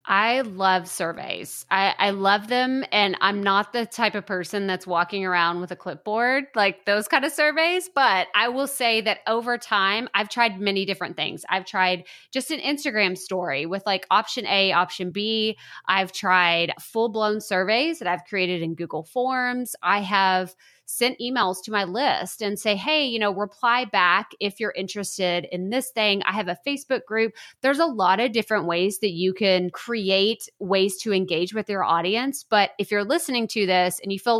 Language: English